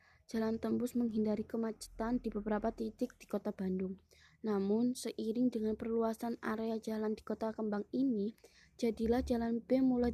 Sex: female